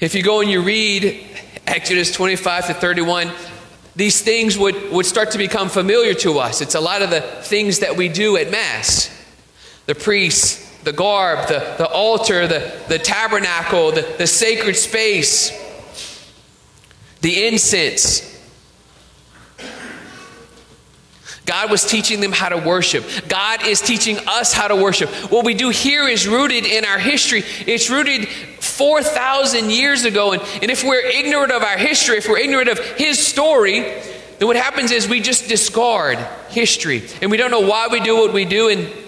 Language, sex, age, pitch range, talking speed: English, male, 40-59, 185-235 Hz, 165 wpm